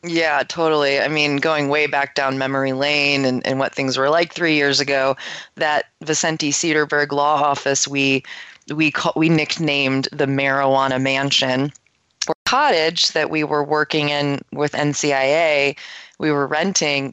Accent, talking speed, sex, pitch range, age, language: American, 155 wpm, female, 135-160 Hz, 20-39, English